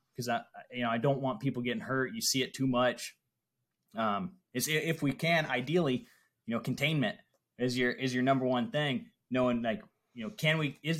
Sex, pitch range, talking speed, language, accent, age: male, 120-145 Hz, 215 wpm, English, American, 20-39